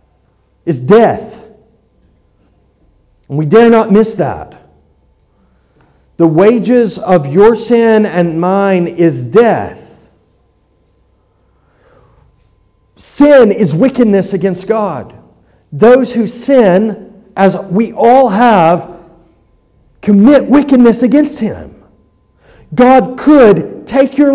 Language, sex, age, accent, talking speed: English, male, 40-59, American, 90 wpm